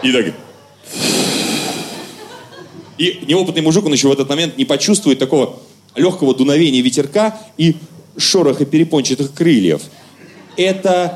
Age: 30-49